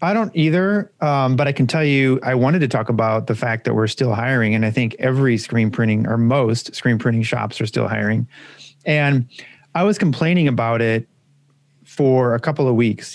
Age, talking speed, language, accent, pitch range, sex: 30-49, 205 wpm, English, American, 115-140 Hz, male